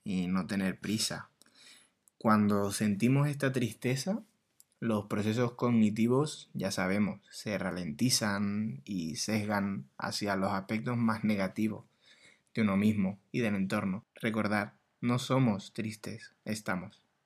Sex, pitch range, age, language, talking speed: male, 100-120 Hz, 20-39, Spanish, 115 wpm